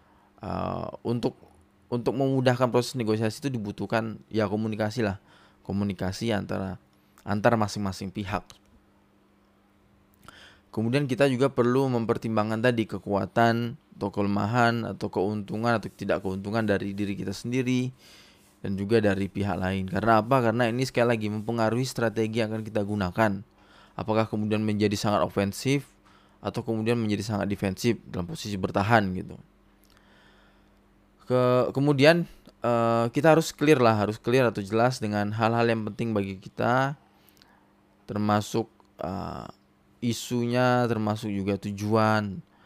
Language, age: Indonesian, 20-39